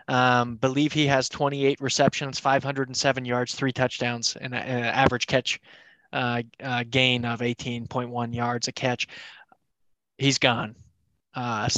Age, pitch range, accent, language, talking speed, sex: 20-39, 125-145 Hz, American, English, 120 wpm, male